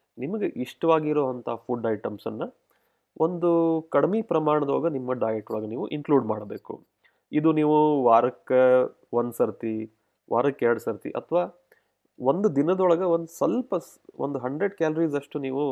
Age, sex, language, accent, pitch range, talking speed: 30-49, male, Kannada, native, 110-145 Hz, 115 wpm